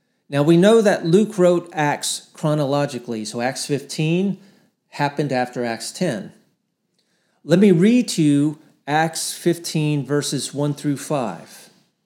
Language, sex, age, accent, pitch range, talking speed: English, male, 40-59, American, 140-185 Hz, 130 wpm